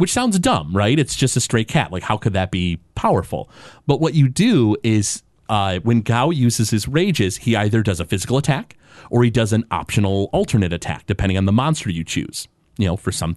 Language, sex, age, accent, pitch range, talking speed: English, male, 30-49, American, 95-130 Hz, 220 wpm